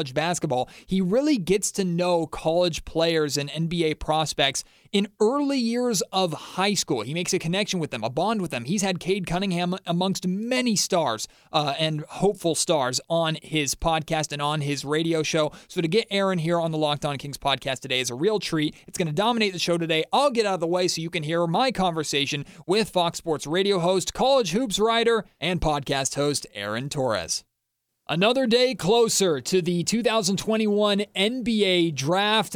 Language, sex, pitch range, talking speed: English, male, 165-205 Hz, 190 wpm